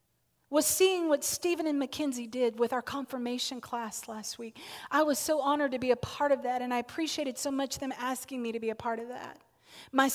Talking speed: 225 wpm